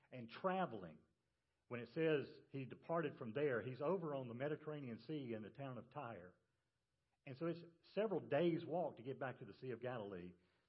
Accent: American